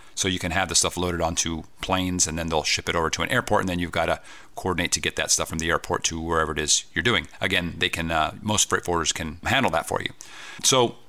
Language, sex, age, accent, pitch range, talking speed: English, male, 40-59, American, 85-100 Hz, 270 wpm